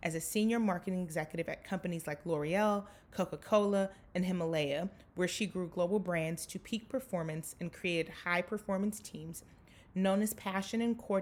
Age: 30-49